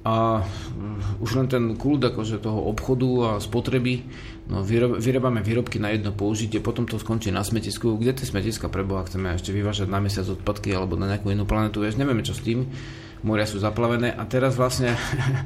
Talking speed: 185 wpm